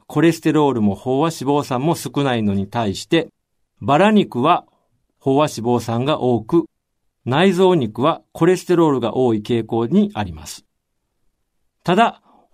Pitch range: 110-165 Hz